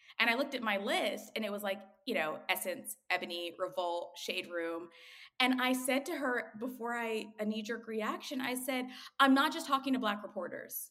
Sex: female